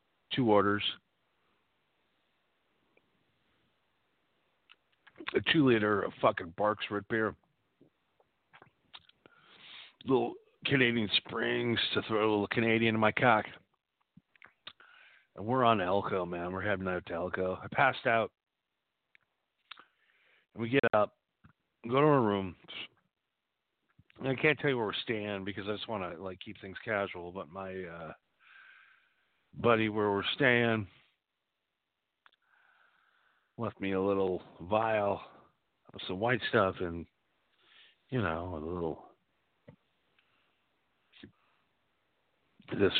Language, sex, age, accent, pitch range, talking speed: English, male, 50-69, American, 95-120 Hz, 110 wpm